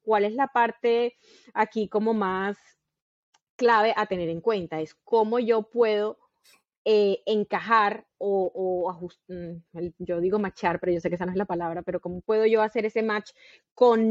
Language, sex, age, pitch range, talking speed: Spanish, female, 20-39, 195-245 Hz, 175 wpm